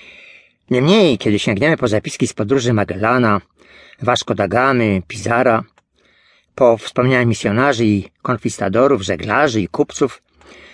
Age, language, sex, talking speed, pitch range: 40-59, Polish, male, 100 wpm, 115-135 Hz